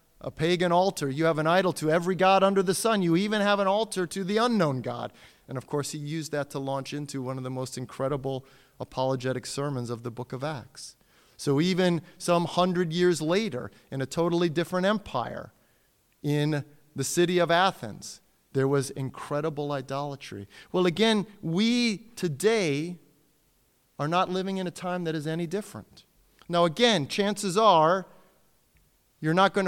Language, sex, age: English, male, 30-49